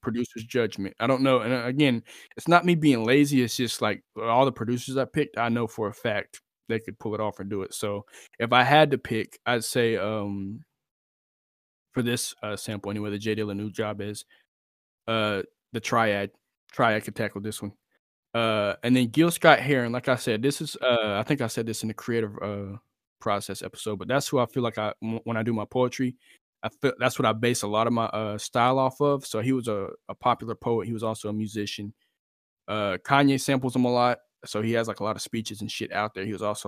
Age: 20-39